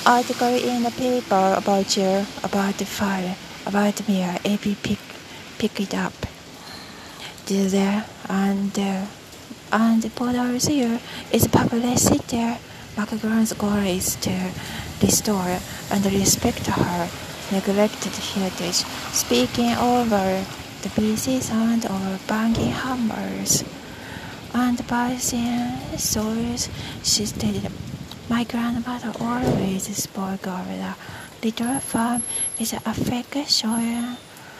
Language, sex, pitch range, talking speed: English, female, 200-245 Hz, 105 wpm